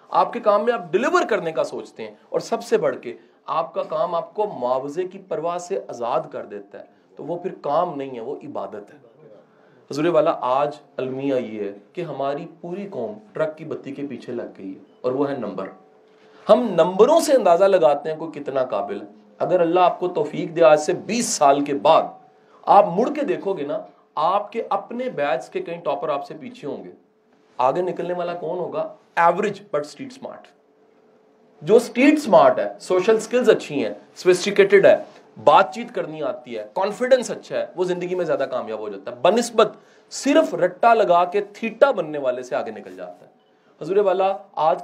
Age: 40-59